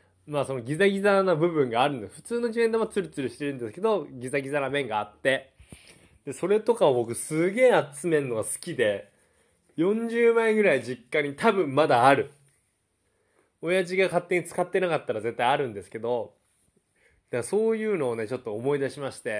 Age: 20-39